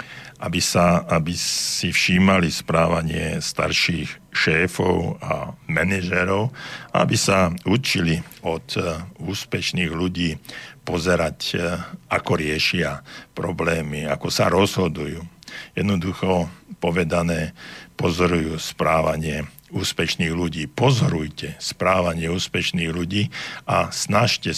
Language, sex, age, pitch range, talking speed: Slovak, male, 60-79, 85-95 Hz, 85 wpm